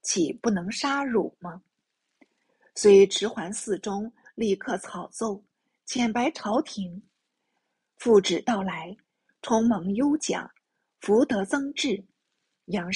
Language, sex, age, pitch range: Chinese, female, 50-69, 200-250 Hz